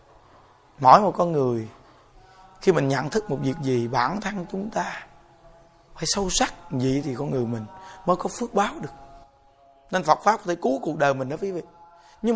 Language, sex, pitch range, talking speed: Vietnamese, male, 145-210 Hz, 200 wpm